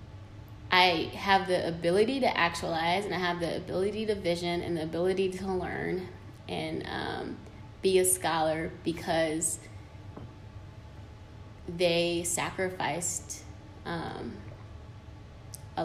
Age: 20-39